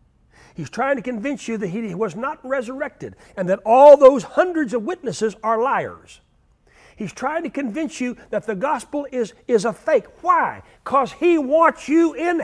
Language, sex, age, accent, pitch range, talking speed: English, male, 60-79, American, 225-295 Hz, 180 wpm